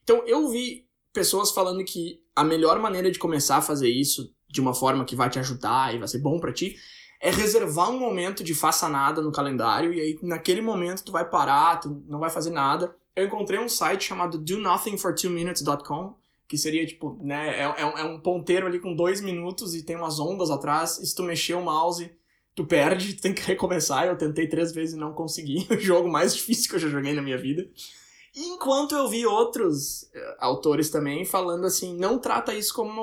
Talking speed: 205 wpm